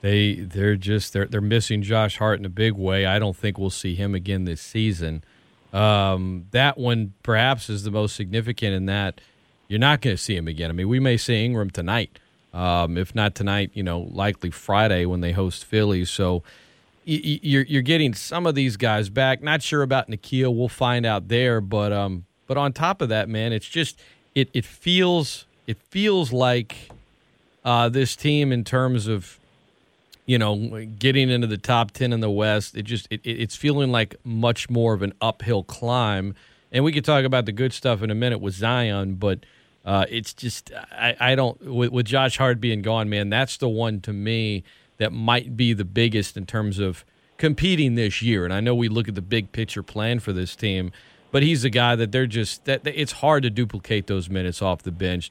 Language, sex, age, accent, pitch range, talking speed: English, male, 40-59, American, 100-125 Hz, 205 wpm